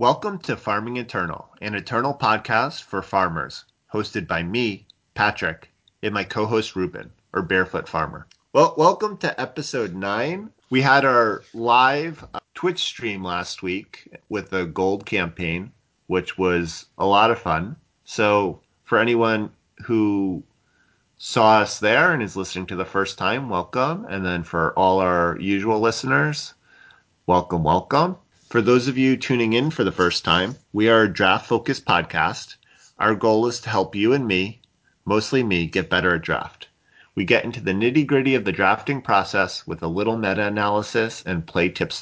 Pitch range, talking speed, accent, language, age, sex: 95-125 Hz, 160 wpm, American, English, 30-49, male